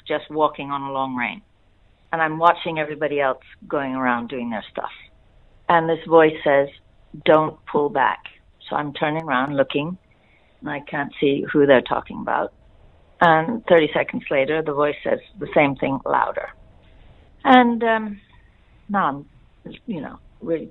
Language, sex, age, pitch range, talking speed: English, female, 50-69, 150-240 Hz, 155 wpm